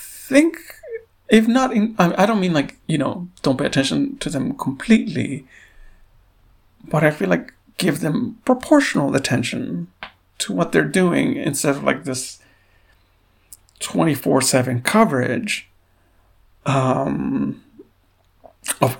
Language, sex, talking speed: English, male, 115 wpm